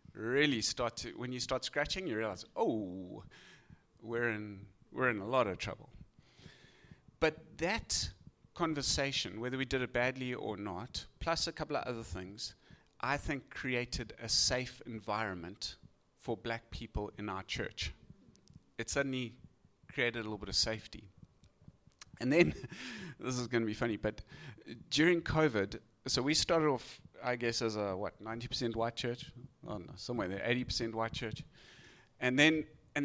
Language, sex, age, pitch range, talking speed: English, male, 30-49, 115-155 Hz, 160 wpm